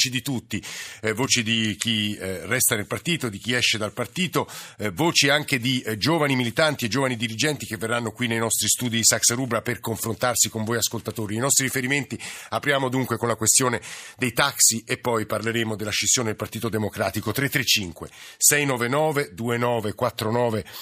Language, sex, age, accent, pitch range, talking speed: Italian, male, 50-69, native, 105-130 Hz, 175 wpm